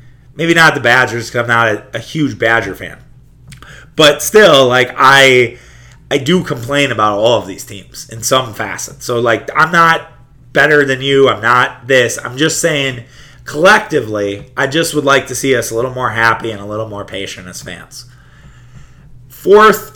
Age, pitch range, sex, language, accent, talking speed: 30-49, 120-140 Hz, male, English, American, 180 wpm